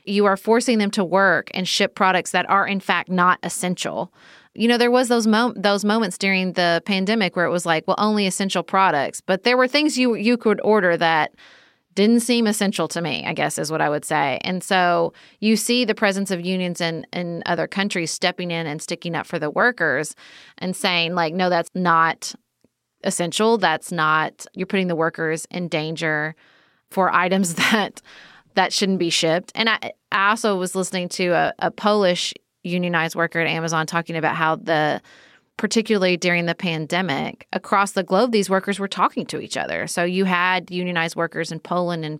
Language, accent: English, American